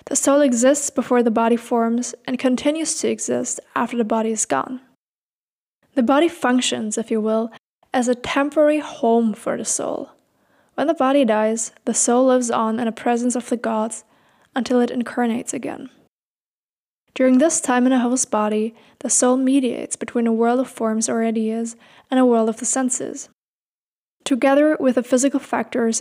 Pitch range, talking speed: 230-265 Hz, 175 wpm